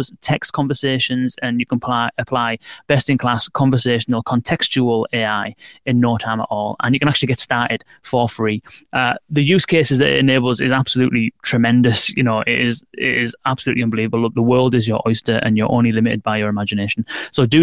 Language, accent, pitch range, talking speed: English, British, 120-140 Hz, 195 wpm